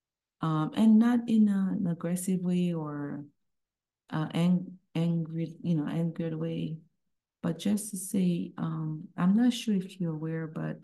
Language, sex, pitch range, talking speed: English, female, 155-190 Hz, 155 wpm